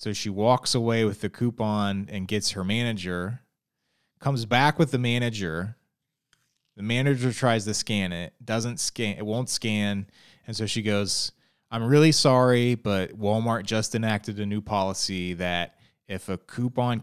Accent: American